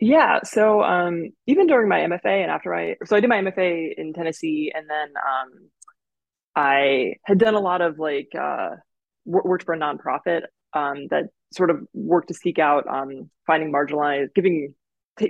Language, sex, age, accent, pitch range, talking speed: English, female, 20-39, American, 145-185 Hz, 180 wpm